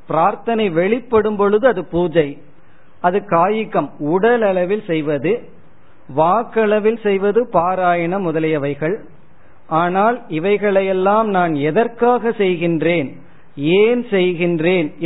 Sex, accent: male, native